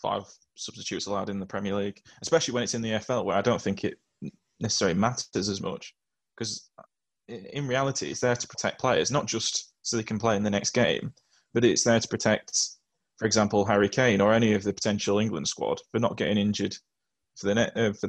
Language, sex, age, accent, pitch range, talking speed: English, male, 10-29, British, 105-125 Hz, 210 wpm